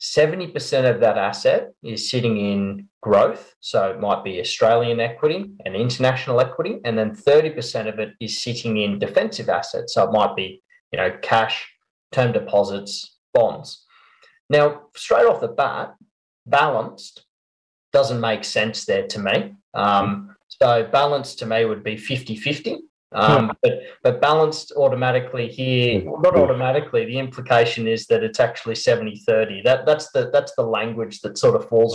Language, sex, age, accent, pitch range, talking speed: English, male, 20-39, Australian, 115-165 Hz, 155 wpm